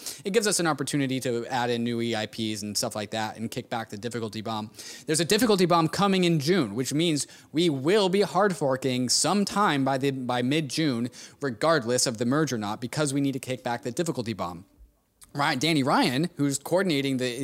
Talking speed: 210 wpm